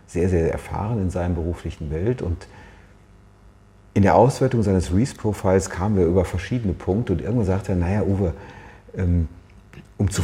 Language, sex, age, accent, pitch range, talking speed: German, male, 40-59, German, 85-100 Hz, 160 wpm